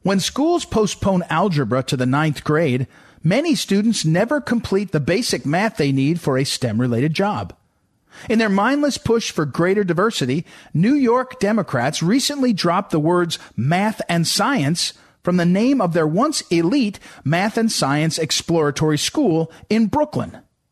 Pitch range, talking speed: 150-215 Hz, 150 wpm